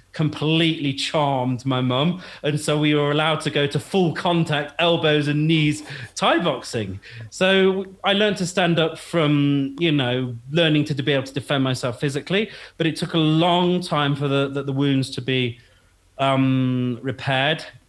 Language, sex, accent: English, male, British